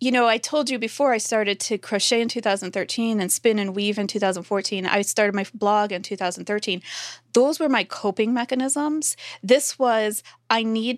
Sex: female